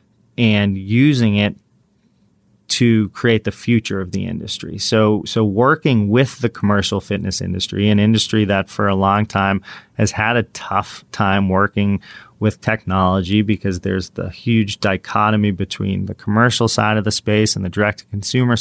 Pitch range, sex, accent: 95-110 Hz, male, American